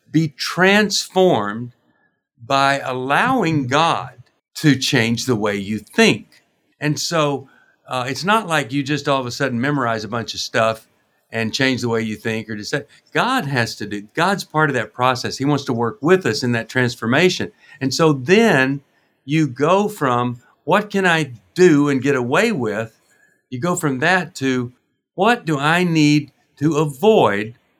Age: 50-69